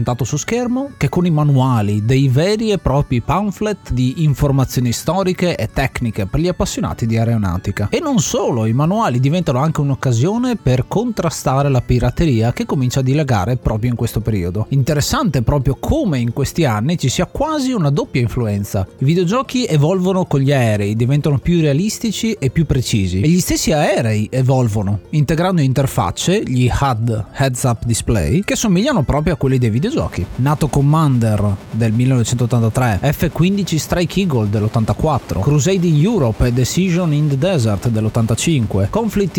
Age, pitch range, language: 30-49, 120-175 Hz, Italian